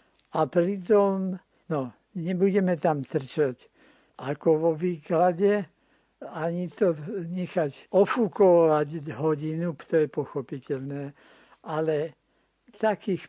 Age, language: 60-79, Slovak